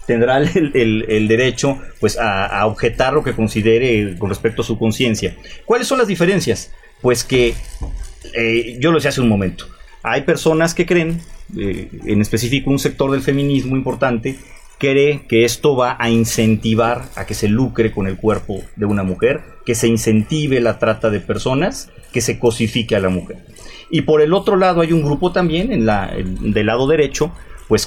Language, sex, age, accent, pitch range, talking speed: Spanish, male, 40-59, Mexican, 115-150 Hz, 185 wpm